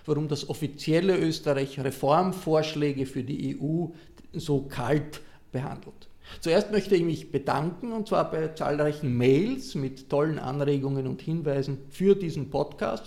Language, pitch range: German, 140-185 Hz